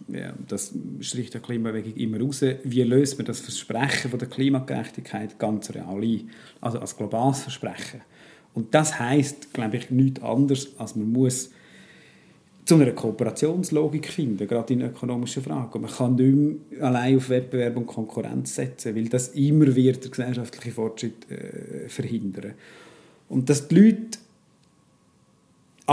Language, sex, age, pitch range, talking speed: German, male, 50-69, 120-145 Hz, 145 wpm